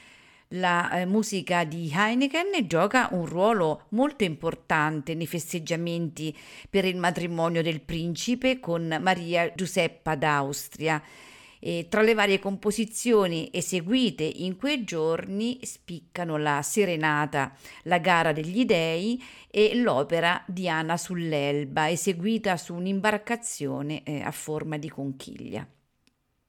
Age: 50-69